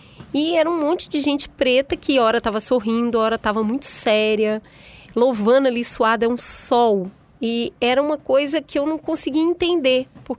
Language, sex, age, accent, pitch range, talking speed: Portuguese, female, 20-39, Brazilian, 215-275 Hz, 185 wpm